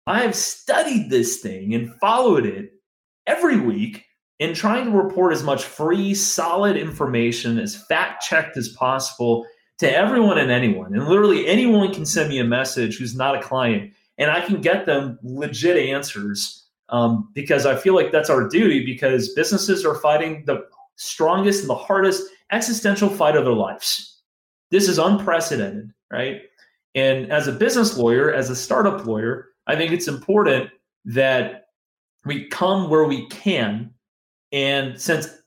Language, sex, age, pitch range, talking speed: English, male, 30-49, 130-195 Hz, 155 wpm